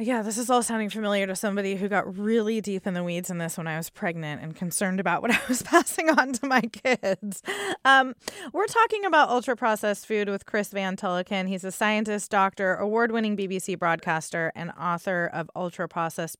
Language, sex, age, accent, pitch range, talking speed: English, female, 20-39, American, 190-250 Hz, 195 wpm